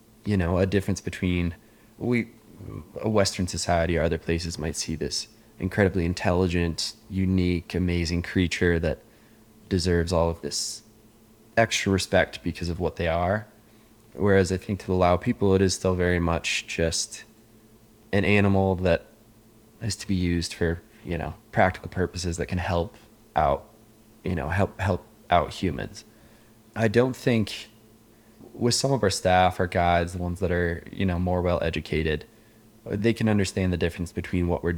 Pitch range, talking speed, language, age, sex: 85-110 Hz, 160 wpm, English, 20-39, male